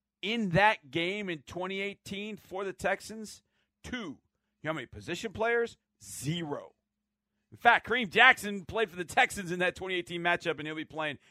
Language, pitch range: English, 140-190 Hz